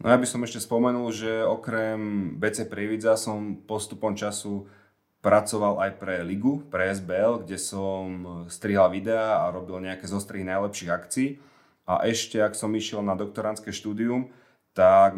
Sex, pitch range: male, 95-110 Hz